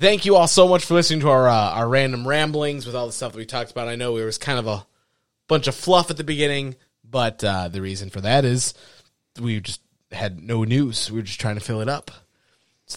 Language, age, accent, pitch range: English, 20-39, American, 110-145 Hz